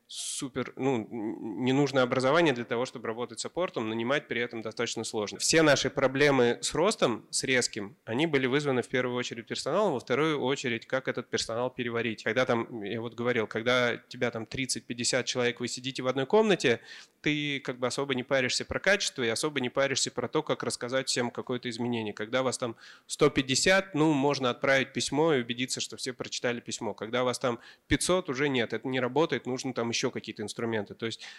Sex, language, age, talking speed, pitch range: male, Russian, 20-39, 195 wpm, 120-140 Hz